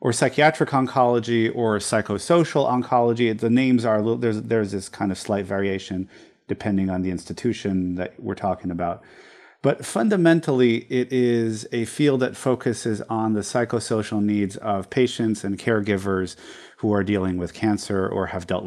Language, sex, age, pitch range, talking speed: English, male, 40-59, 100-125 Hz, 160 wpm